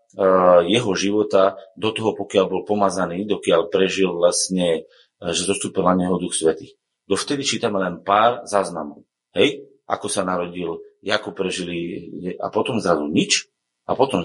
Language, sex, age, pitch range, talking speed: Slovak, male, 30-49, 95-140 Hz, 140 wpm